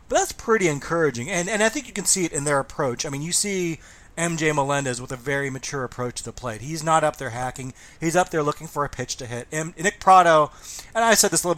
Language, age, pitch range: English, 30-49, 135-165 Hz